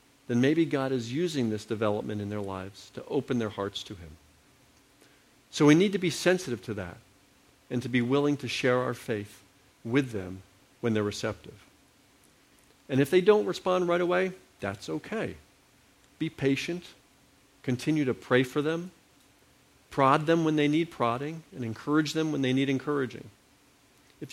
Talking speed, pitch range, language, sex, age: 165 wpm, 115-150 Hz, English, male, 50-69